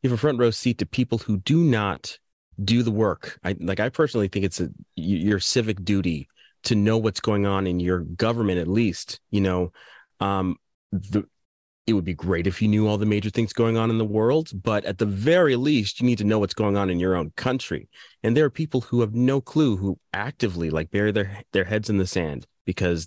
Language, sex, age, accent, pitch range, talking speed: English, male, 30-49, American, 85-110 Hz, 230 wpm